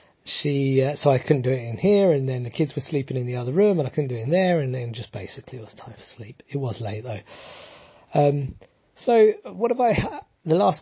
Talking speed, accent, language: 260 wpm, British, English